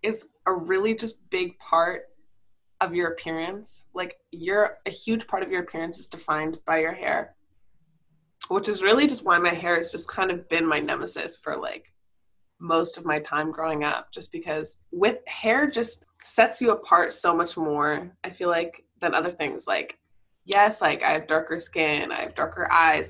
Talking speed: 185 wpm